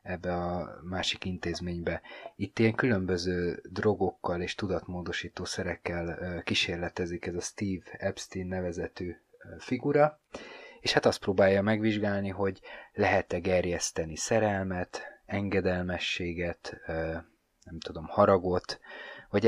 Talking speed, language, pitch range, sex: 95 wpm, Hungarian, 90-110 Hz, male